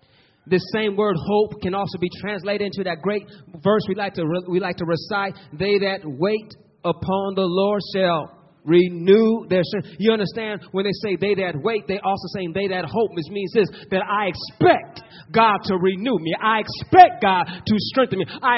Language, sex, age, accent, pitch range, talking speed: English, male, 30-49, American, 145-195 Hz, 195 wpm